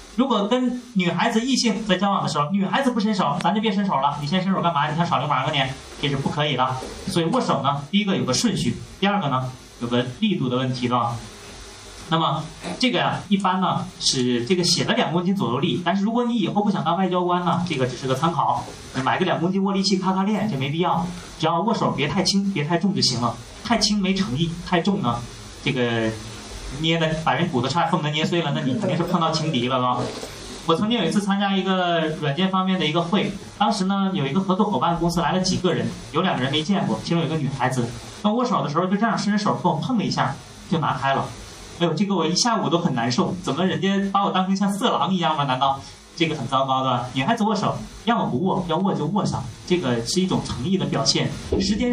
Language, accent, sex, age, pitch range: Chinese, native, male, 30-49, 135-195 Hz